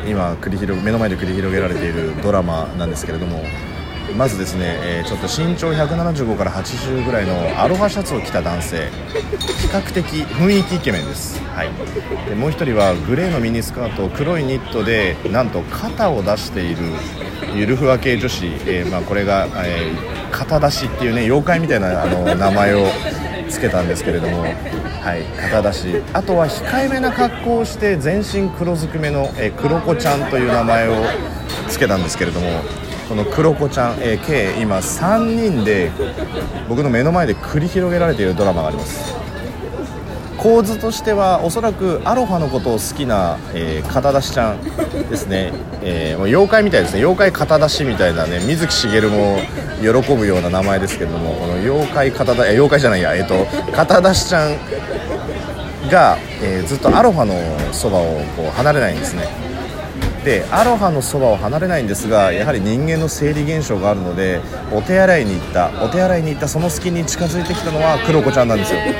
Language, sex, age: Japanese, male, 30-49